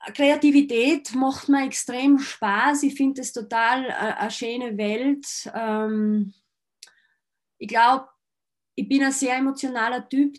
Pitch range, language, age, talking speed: 220-270 Hz, German, 20-39, 115 wpm